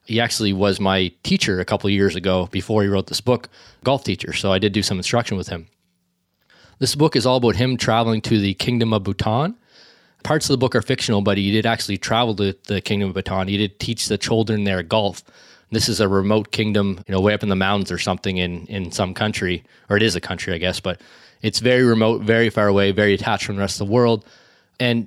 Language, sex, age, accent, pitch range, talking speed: English, male, 20-39, American, 95-115 Hz, 240 wpm